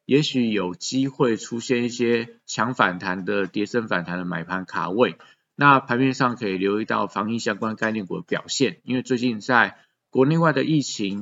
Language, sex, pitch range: Chinese, male, 105-130 Hz